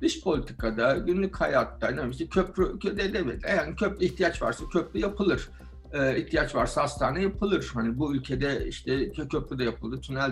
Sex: male